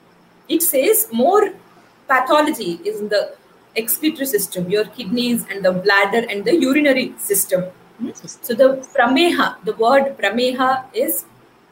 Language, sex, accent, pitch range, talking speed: Hindi, female, native, 225-335 Hz, 130 wpm